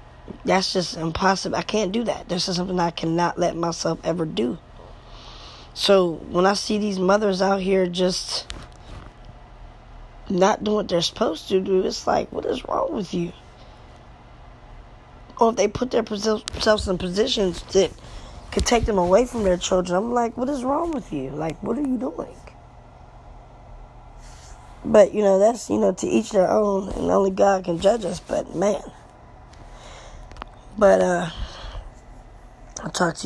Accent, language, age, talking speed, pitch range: American, English, 20-39, 160 wpm, 175-205 Hz